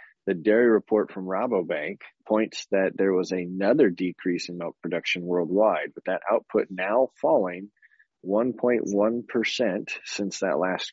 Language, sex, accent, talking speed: English, male, American, 130 wpm